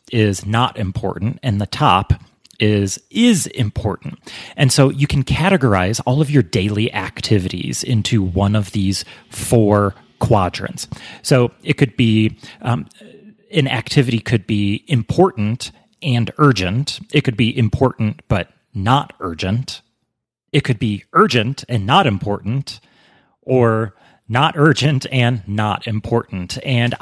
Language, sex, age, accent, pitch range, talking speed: English, male, 30-49, American, 105-135 Hz, 130 wpm